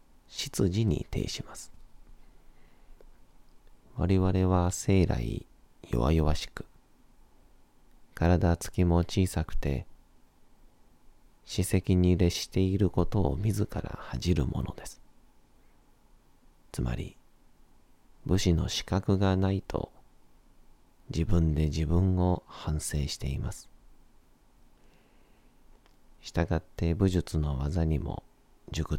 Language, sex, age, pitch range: Japanese, male, 40-59, 80-95 Hz